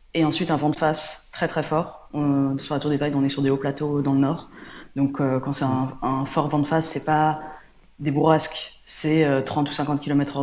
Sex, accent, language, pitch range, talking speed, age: female, French, French, 140-160 Hz, 240 wpm, 20-39